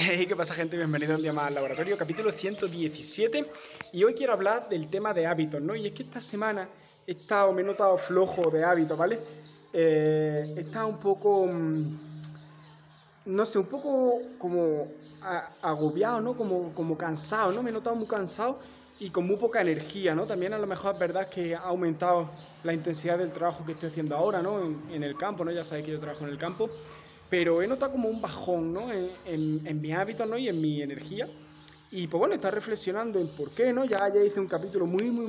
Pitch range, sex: 155-195 Hz, male